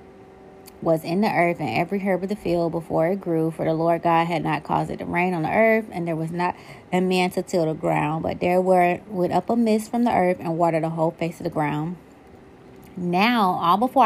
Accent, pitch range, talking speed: American, 165-195 Hz, 245 wpm